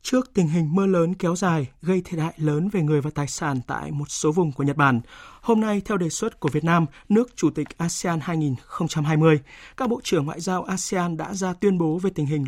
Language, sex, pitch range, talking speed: Vietnamese, male, 155-205 Hz, 235 wpm